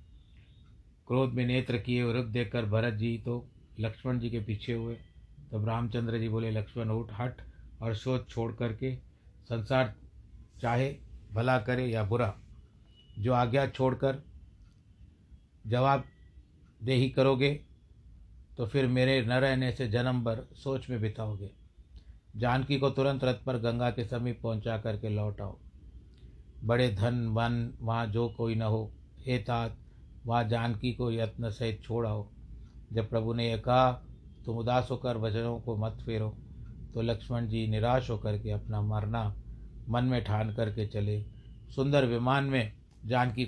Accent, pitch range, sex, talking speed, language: native, 110-125 Hz, male, 150 wpm, Hindi